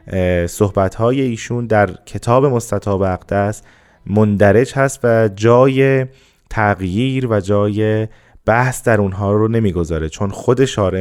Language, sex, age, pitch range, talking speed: Persian, male, 20-39, 100-125 Hz, 115 wpm